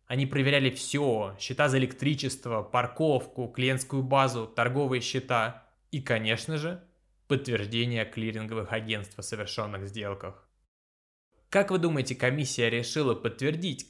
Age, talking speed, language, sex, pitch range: 20-39, 115 wpm, Russian, male, 110-140 Hz